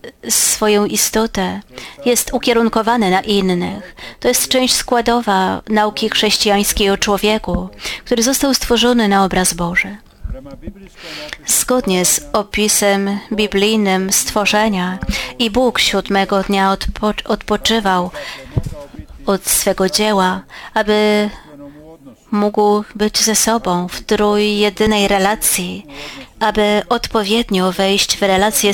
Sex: female